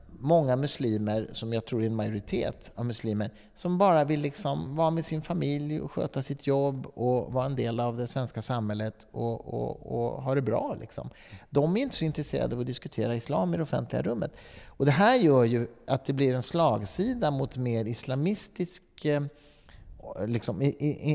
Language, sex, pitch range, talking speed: Swedish, male, 115-150 Hz, 170 wpm